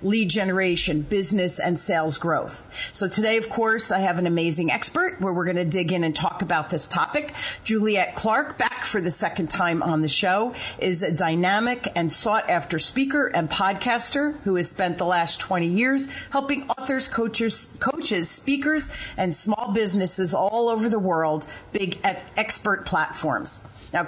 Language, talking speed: English, 170 wpm